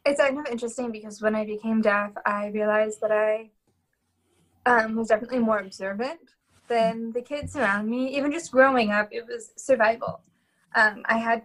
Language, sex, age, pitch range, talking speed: English, female, 10-29, 220-250 Hz, 170 wpm